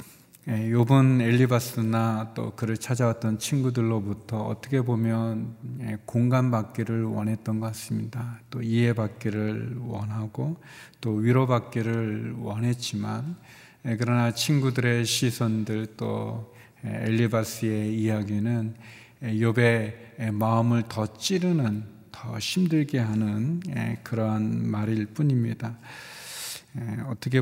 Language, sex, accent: Korean, male, native